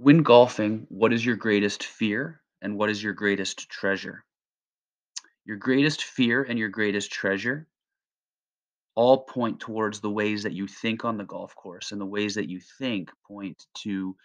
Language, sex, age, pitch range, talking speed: English, male, 30-49, 100-120 Hz, 170 wpm